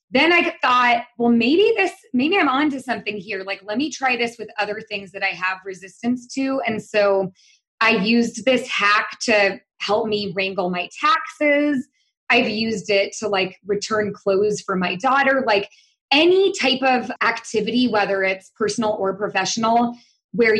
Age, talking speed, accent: 20-39, 165 wpm, American